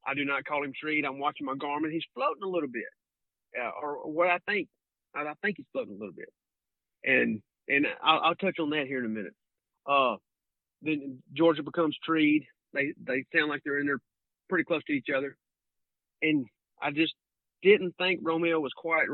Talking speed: 205 wpm